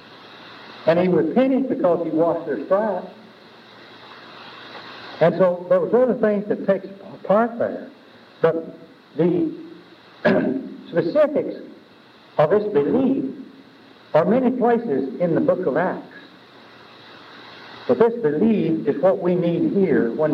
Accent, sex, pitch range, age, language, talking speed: American, male, 170-245 Hz, 60-79, English, 120 wpm